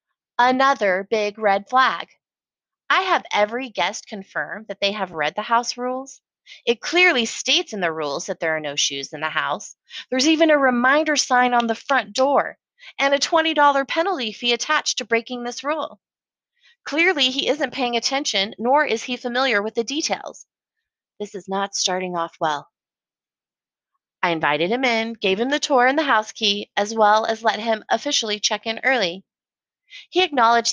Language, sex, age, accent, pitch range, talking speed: English, female, 30-49, American, 205-280 Hz, 175 wpm